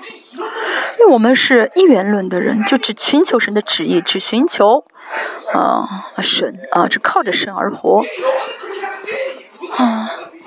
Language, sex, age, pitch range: Chinese, female, 20-39, 215-320 Hz